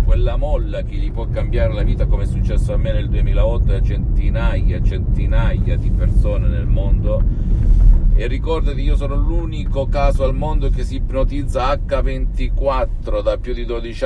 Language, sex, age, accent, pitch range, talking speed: Italian, male, 50-69, native, 85-110 Hz, 160 wpm